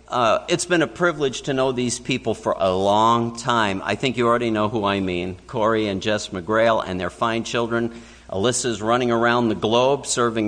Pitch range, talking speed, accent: 110-140 Hz, 200 wpm, American